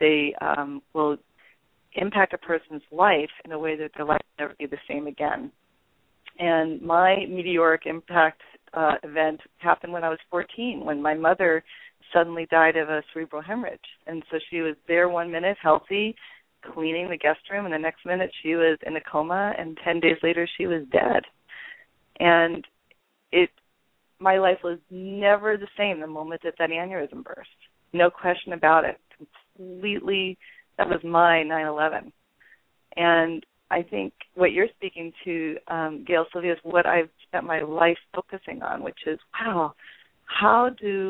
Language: English